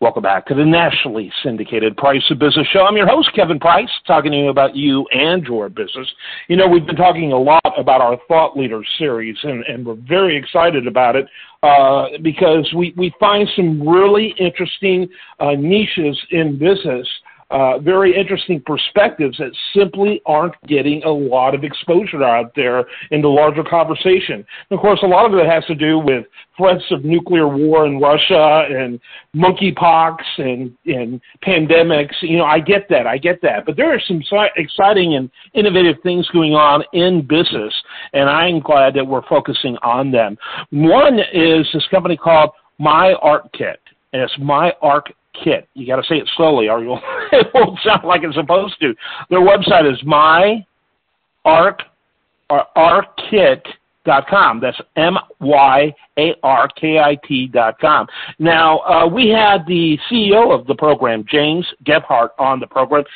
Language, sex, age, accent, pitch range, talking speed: English, male, 50-69, American, 140-180 Hz, 160 wpm